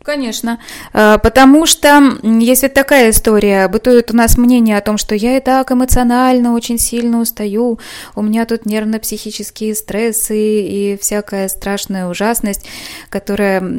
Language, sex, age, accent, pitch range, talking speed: Russian, female, 20-39, native, 205-245 Hz, 130 wpm